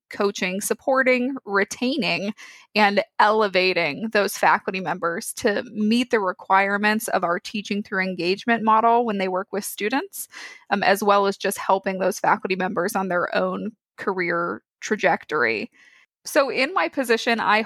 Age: 20-39